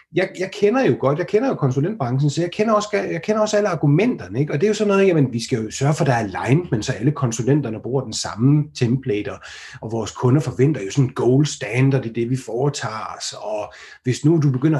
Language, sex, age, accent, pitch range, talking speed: Danish, male, 30-49, native, 135-195 Hz, 240 wpm